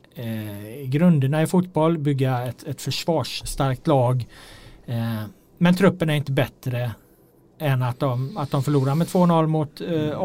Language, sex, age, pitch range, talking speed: Swedish, male, 30-49, 130-160 Hz, 150 wpm